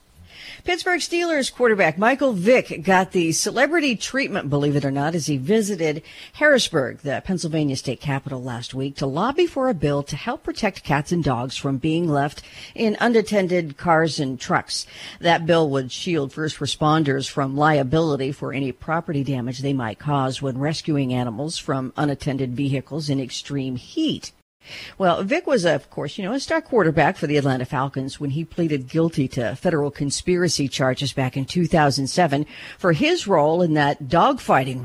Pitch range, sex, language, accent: 140-215 Hz, female, English, American